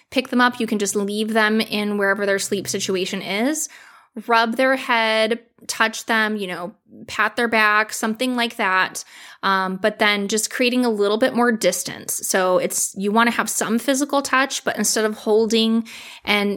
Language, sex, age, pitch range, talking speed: English, female, 20-39, 200-240 Hz, 180 wpm